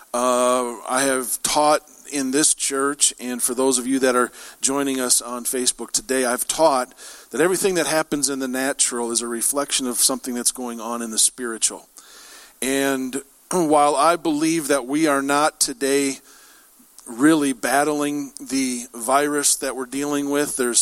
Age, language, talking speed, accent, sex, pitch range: 50-69, English, 165 wpm, American, male, 125-145 Hz